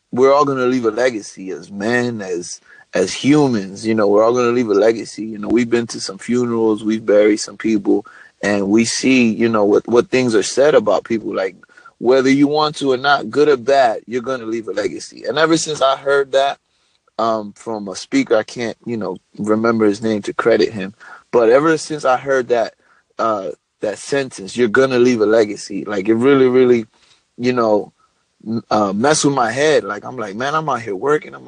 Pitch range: 115-165 Hz